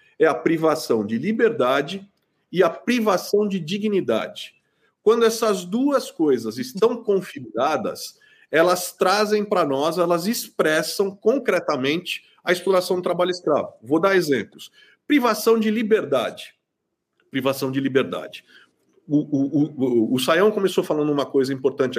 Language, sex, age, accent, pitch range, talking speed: Portuguese, male, 40-59, Brazilian, 140-225 Hz, 130 wpm